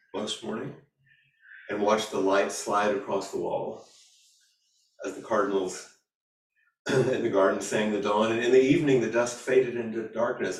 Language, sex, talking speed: English, male, 160 wpm